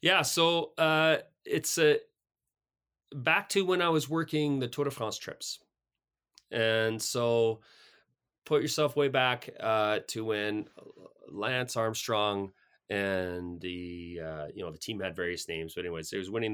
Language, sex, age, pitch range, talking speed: English, male, 30-49, 95-125 Hz, 150 wpm